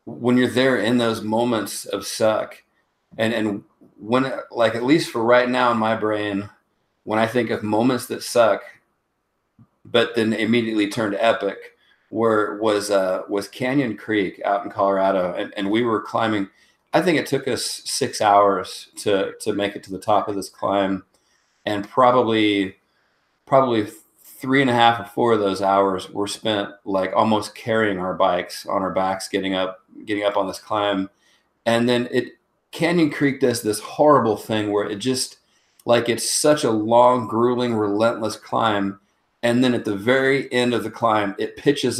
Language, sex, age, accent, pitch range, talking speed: English, male, 40-59, American, 105-125 Hz, 175 wpm